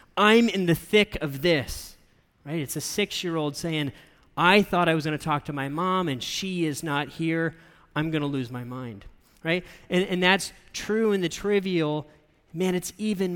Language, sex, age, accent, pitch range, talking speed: English, male, 30-49, American, 145-175 Hz, 195 wpm